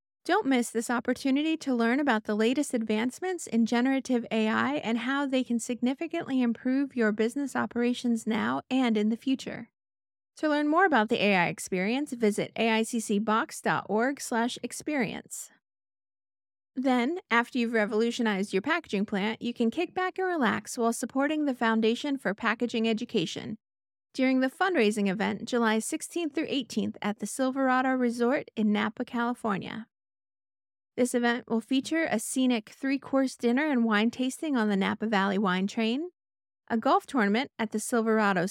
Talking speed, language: 150 wpm, English